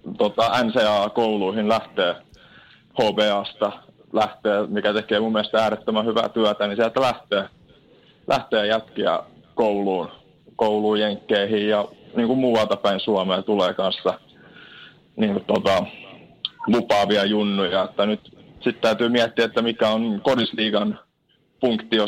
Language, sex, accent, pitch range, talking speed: Finnish, male, native, 105-115 Hz, 105 wpm